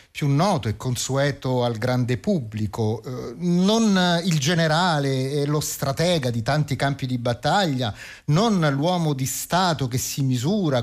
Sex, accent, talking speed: male, native, 140 wpm